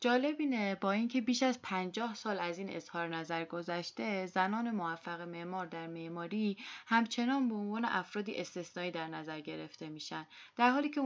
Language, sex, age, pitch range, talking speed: Persian, female, 20-39, 170-220 Hz, 155 wpm